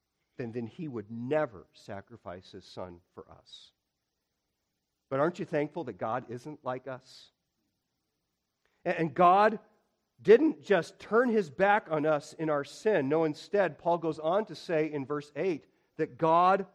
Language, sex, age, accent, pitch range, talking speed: English, male, 50-69, American, 125-195 Hz, 150 wpm